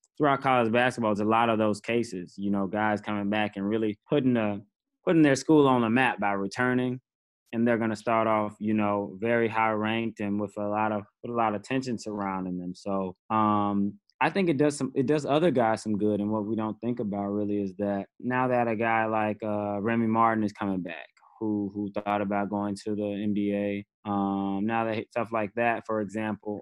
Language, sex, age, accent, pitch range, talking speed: English, male, 20-39, American, 105-120 Hz, 220 wpm